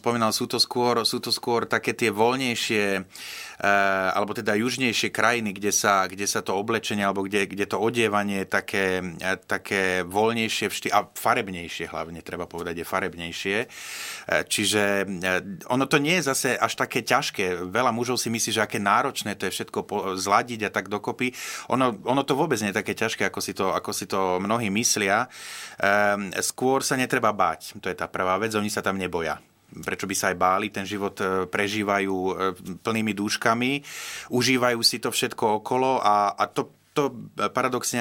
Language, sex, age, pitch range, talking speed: Slovak, male, 30-49, 95-115 Hz, 175 wpm